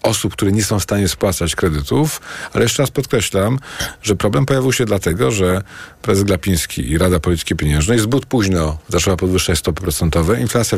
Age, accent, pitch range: 40-59, native, 95-115 Hz